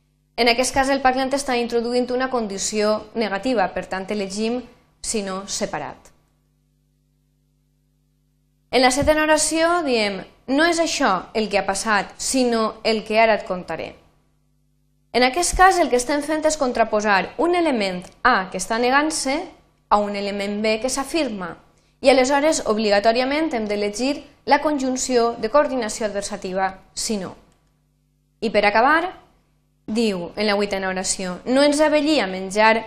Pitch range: 195-265 Hz